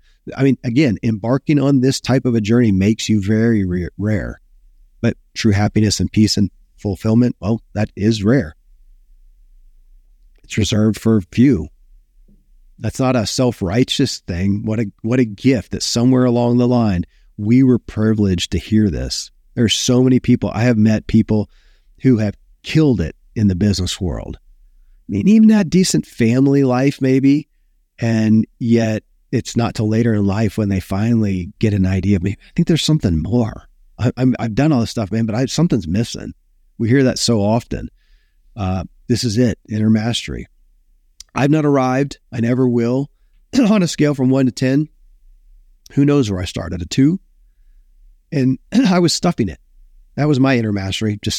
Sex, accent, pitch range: male, American, 95-130 Hz